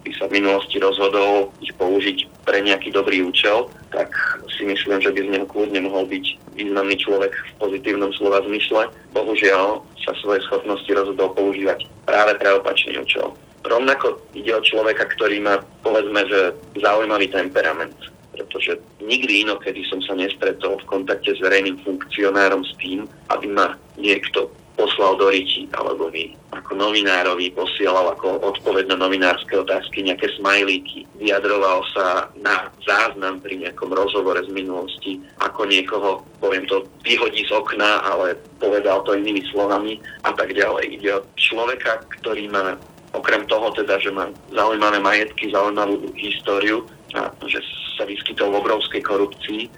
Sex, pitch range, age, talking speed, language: male, 95-105 Hz, 30-49, 145 wpm, Slovak